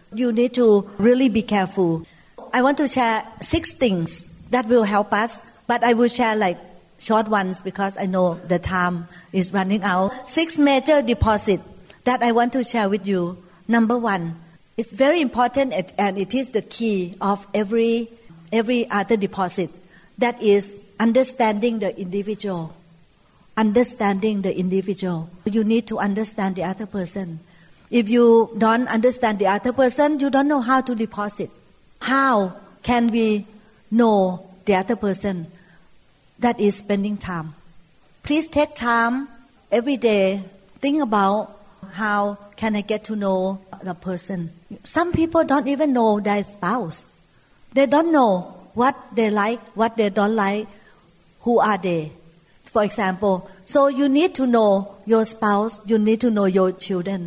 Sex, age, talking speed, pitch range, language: female, 60-79, 150 wpm, 190-240 Hz, English